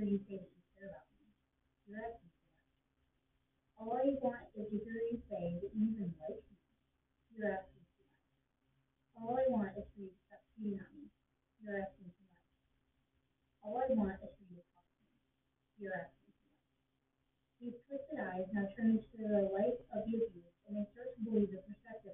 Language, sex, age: English, female, 30-49